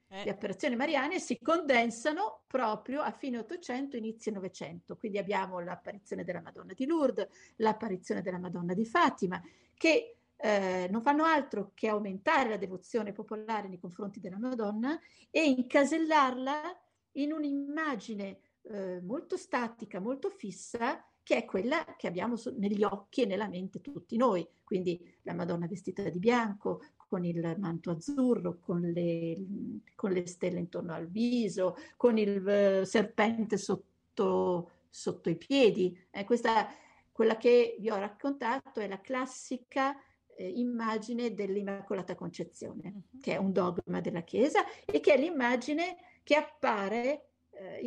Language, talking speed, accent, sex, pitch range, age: Italian, 140 wpm, native, female, 185-255 Hz, 50-69